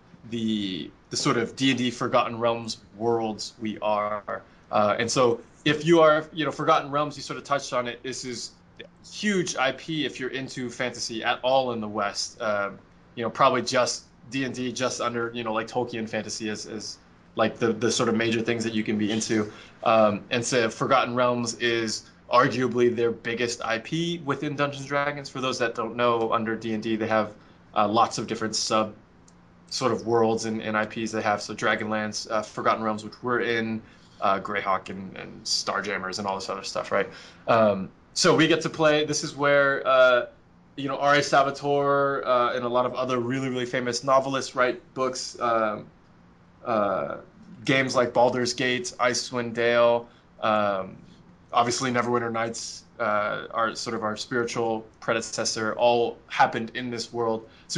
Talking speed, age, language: 180 wpm, 20-39, English